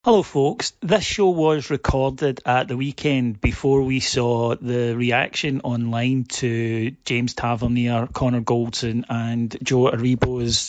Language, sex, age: English, male, 40-59